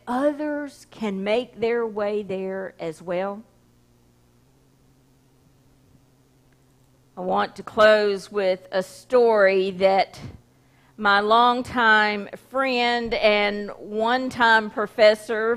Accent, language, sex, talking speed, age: American, English, female, 85 wpm, 50-69